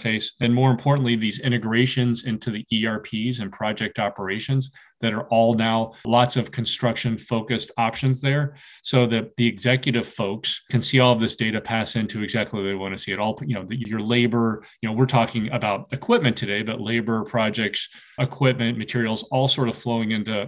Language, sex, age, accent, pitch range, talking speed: English, male, 30-49, American, 110-125 Hz, 190 wpm